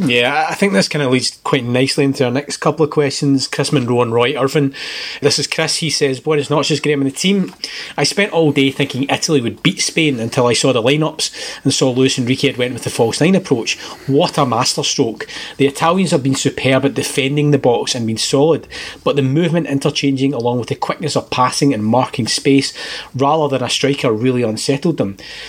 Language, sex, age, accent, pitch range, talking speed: English, male, 30-49, British, 125-150 Hz, 220 wpm